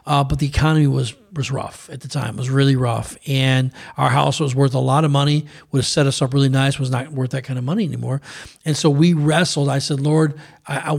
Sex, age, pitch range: male, 40-59, 135-160 Hz